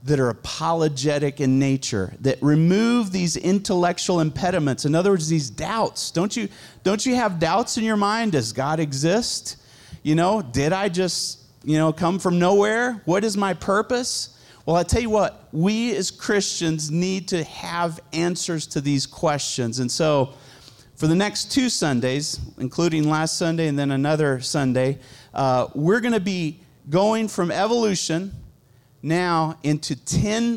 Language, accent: English, American